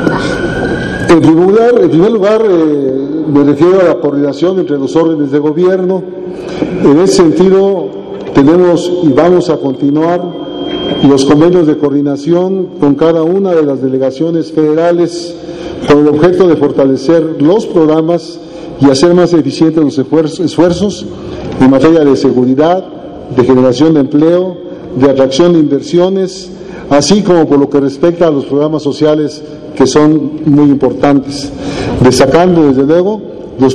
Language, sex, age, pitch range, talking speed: Spanish, male, 50-69, 140-175 Hz, 135 wpm